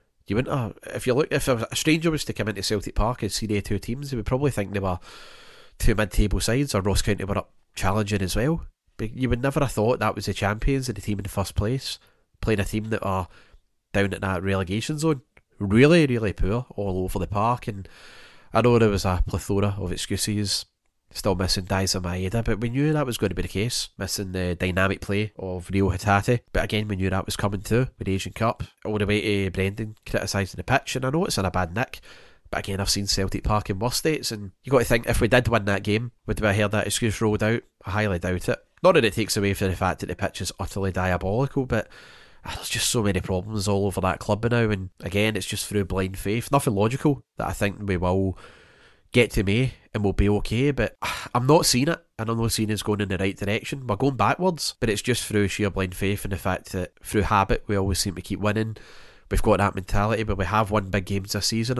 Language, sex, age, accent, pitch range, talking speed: English, male, 30-49, British, 95-115 Hz, 245 wpm